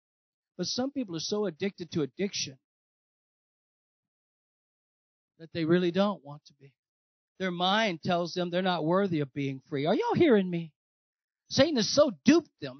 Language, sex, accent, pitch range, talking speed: English, male, American, 185-270 Hz, 160 wpm